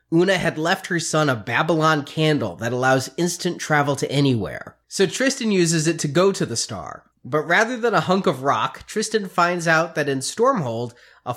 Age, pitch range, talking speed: 30-49, 140-200 Hz, 195 wpm